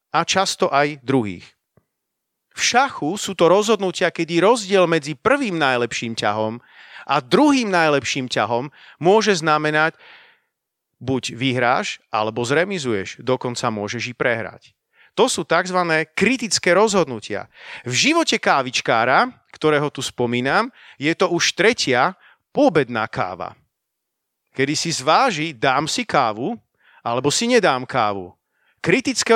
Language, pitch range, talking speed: Slovak, 150-225 Hz, 115 wpm